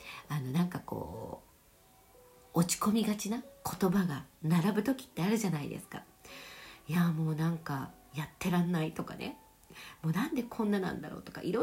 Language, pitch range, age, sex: Japanese, 160-255 Hz, 50-69, female